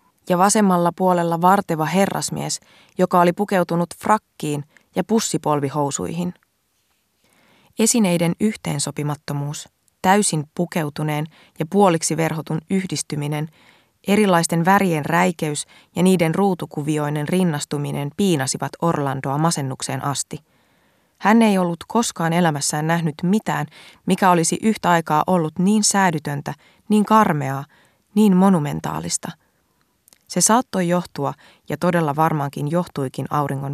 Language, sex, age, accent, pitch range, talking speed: Finnish, female, 20-39, native, 150-185 Hz, 100 wpm